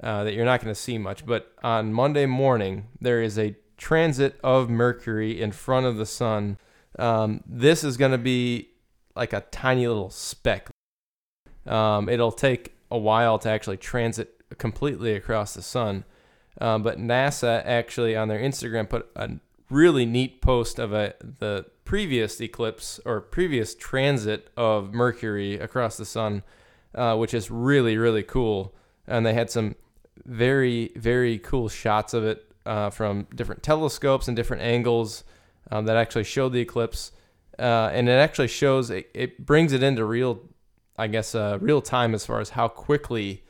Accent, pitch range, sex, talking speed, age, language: American, 110-125 Hz, male, 165 wpm, 20-39, English